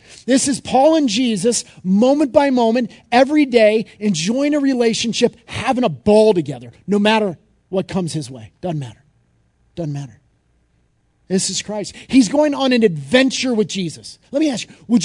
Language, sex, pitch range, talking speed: English, male, 175-260 Hz, 170 wpm